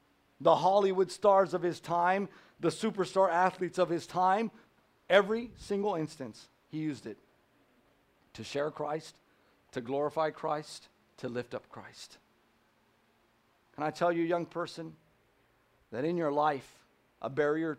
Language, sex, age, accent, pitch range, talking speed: English, male, 50-69, American, 135-175 Hz, 135 wpm